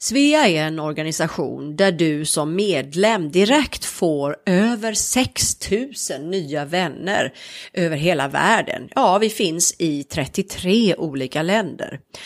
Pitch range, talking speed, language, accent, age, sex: 160-225 Hz, 115 wpm, Swedish, native, 30-49, female